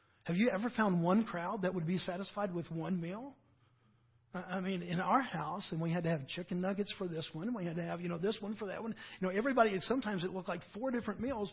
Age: 50-69